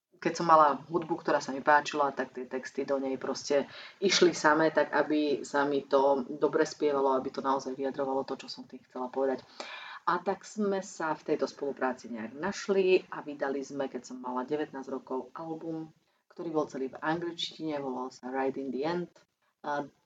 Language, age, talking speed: Slovak, 30-49, 190 wpm